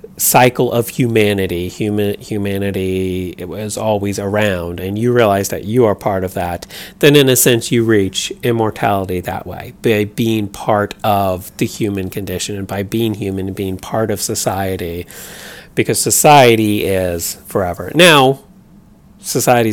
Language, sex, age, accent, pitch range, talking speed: English, male, 30-49, American, 100-125 Hz, 150 wpm